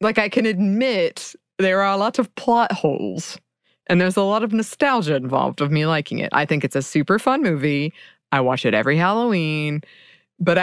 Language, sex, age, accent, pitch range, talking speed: English, female, 20-39, American, 165-240 Hz, 190 wpm